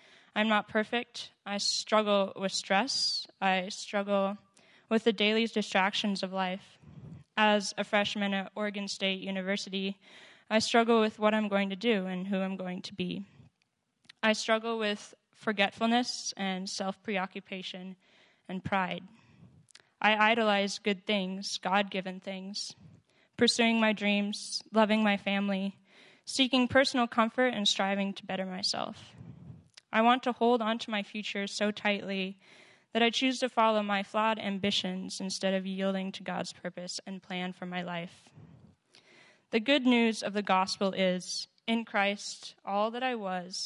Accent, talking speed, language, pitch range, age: American, 145 wpm, English, 195-220 Hz, 10-29